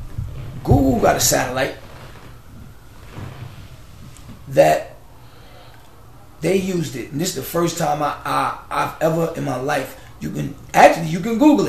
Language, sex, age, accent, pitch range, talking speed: English, male, 30-49, American, 120-140 Hz, 140 wpm